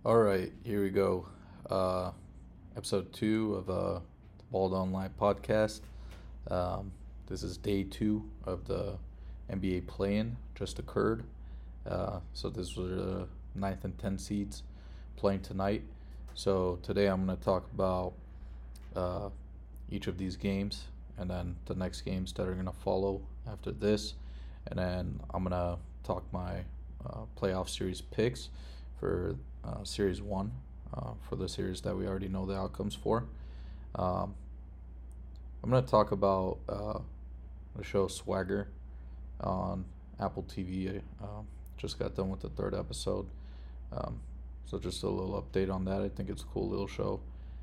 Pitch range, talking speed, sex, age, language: 65-100 Hz, 150 wpm, male, 20-39, English